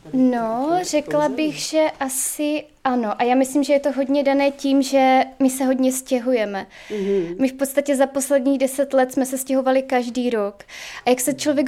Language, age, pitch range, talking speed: Czech, 20-39, 255-285 Hz, 185 wpm